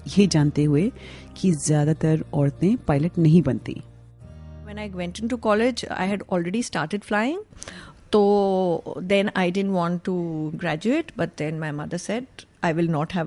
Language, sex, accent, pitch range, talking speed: Hindi, female, native, 155-190 Hz, 80 wpm